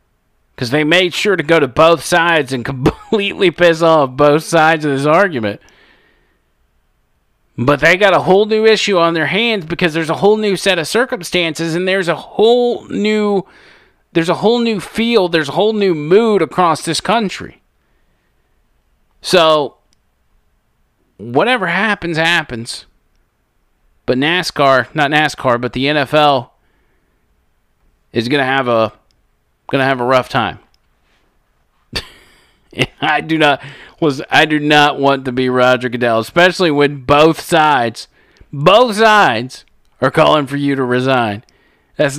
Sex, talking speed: male, 140 wpm